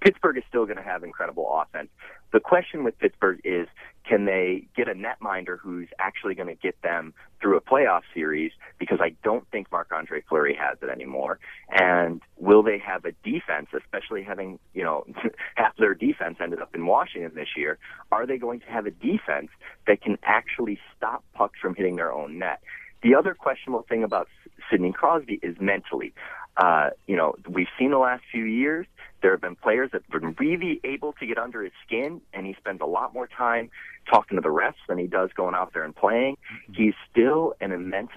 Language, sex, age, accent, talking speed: English, male, 30-49, American, 200 wpm